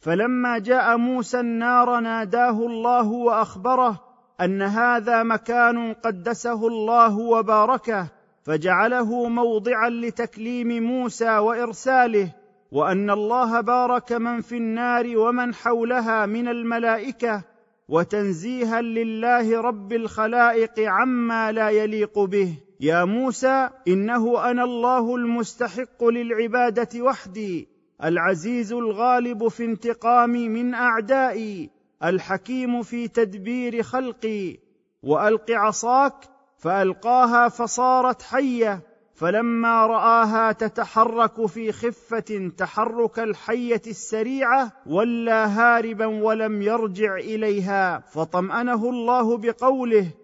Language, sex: Arabic, male